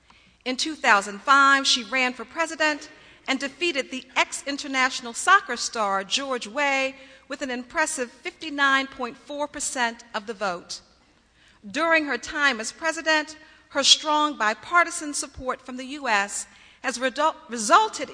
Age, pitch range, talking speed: 50-69, 235-295 Hz, 115 wpm